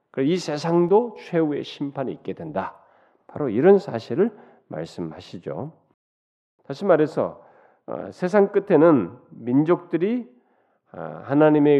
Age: 40-59